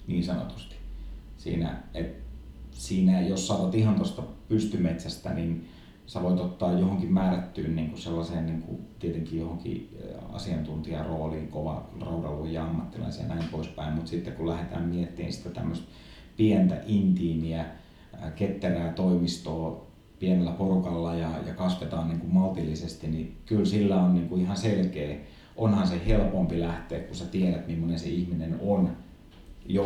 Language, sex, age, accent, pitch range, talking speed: Finnish, male, 30-49, native, 80-95 Hz, 130 wpm